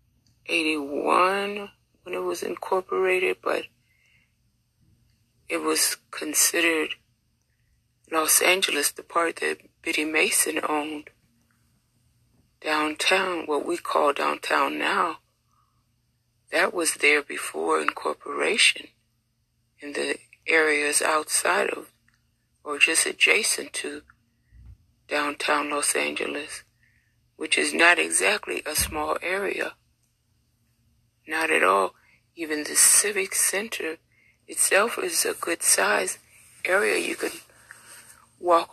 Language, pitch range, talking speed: English, 115-170 Hz, 95 wpm